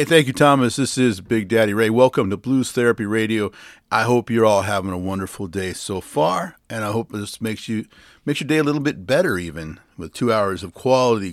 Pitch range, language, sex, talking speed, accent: 95-125 Hz, English, male, 220 wpm, American